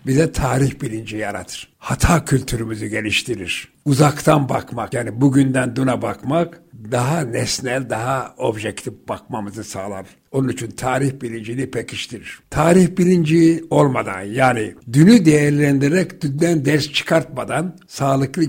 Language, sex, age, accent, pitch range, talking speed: Turkish, male, 60-79, native, 120-155 Hz, 110 wpm